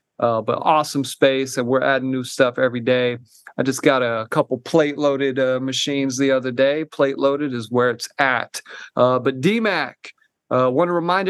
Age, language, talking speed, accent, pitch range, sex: 30-49, English, 185 wpm, American, 130-155 Hz, male